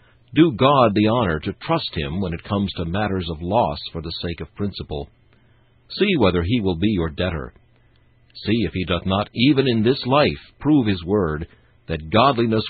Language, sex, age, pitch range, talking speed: English, male, 60-79, 90-120 Hz, 190 wpm